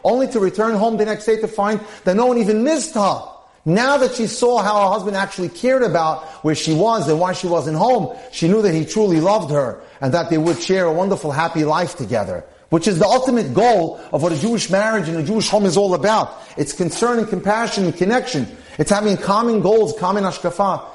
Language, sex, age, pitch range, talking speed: English, male, 40-59, 160-220 Hz, 225 wpm